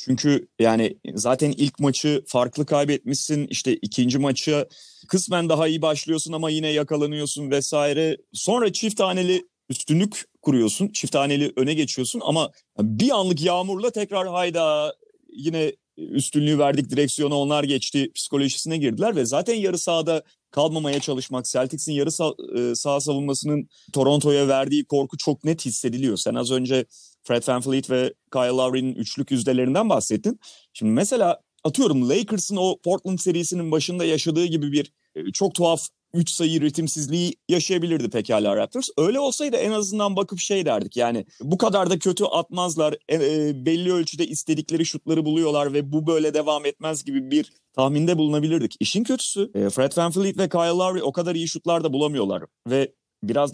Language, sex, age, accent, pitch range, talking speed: Turkish, male, 40-59, native, 140-180 Hz, 145 wpm